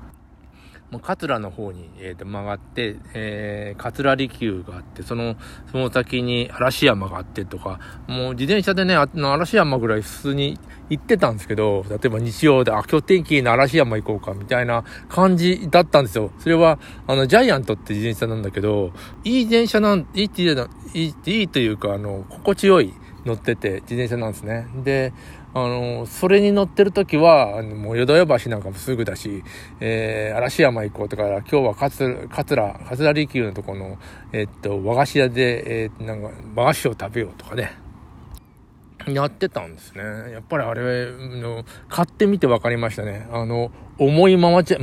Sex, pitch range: male, 105-140 Hz